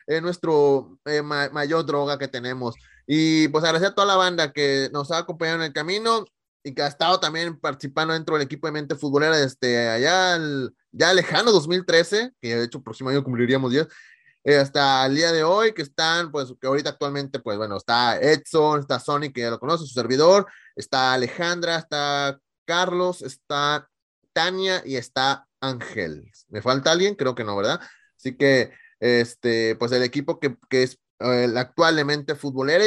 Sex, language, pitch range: male, English, 130-165 Hz